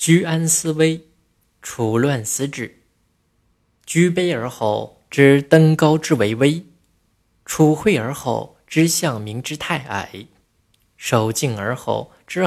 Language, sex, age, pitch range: Chinese, male, 20-39, 115-160 Hz